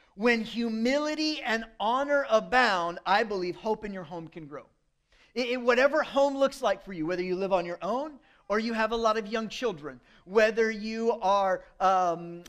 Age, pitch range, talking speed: 40-59, 200-245 Hz, 180 wpm